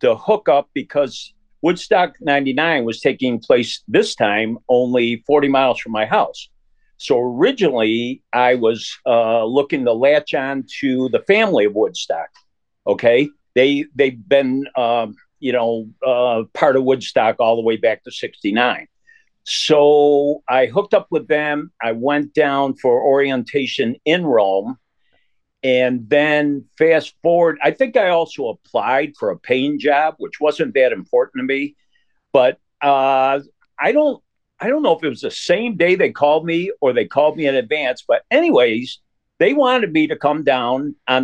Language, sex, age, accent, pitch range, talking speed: English, male, 50-69, American, 120-155 Hz, 160 wpm